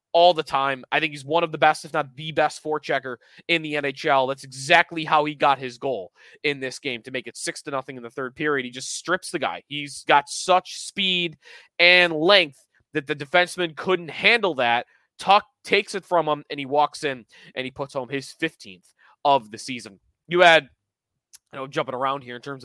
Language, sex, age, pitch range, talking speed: English, male, 20-39, 140-215 Hz, 220 wpm